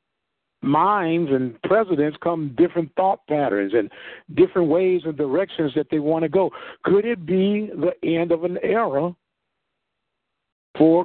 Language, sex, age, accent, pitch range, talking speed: English, male, 50-69, American, 150-180 Hz, 140 wpm